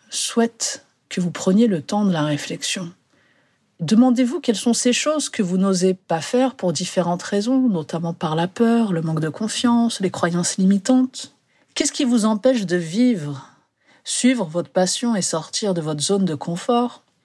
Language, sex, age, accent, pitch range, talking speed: French, female, 50-69, French, 165-235 Hz, 170 wpm